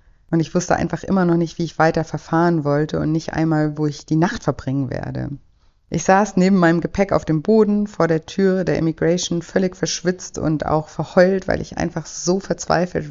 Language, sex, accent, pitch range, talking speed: German, female, German, 145-170 Hz, 200 wpm